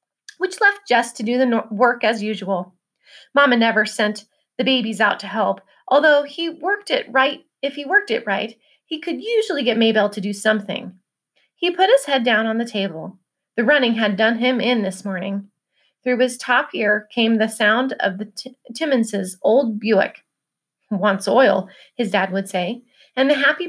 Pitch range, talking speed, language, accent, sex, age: 205-275 Hz, 185 wpm, English, American, female, 30-49